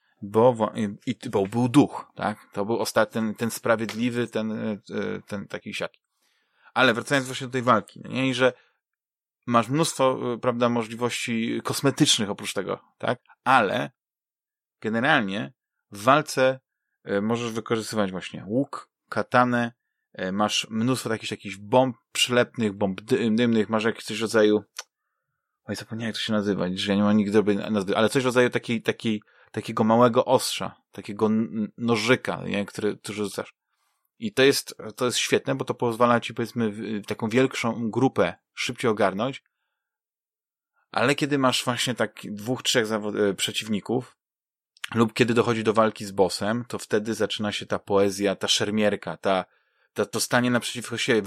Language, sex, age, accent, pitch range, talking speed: Polish, male, 30-49, native, 105-125 Hz, 150 wpm